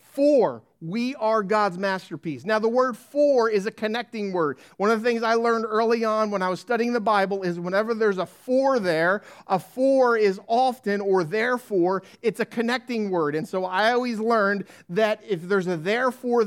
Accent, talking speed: American, 195 wpm